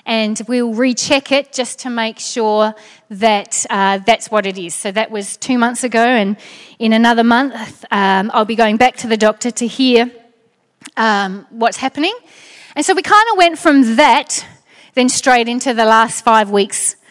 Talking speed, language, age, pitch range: 180 wpm, English, 30-49, 220-275 Hz